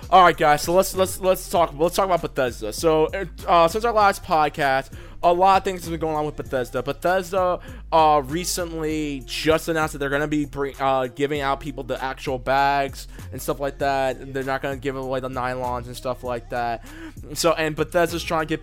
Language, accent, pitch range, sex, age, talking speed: English, American, 140-185 Hz, male, 20-39, 215 wpm